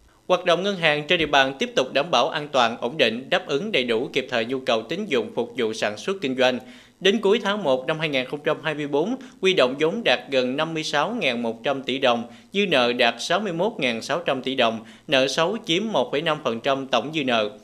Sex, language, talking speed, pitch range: male, Vietnamese, 195 wpm, 130-175 Hz